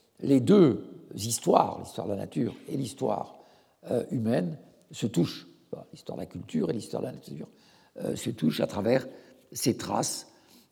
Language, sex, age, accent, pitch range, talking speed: French, male, 60-79, French, 115-175 Hz, 160 wpm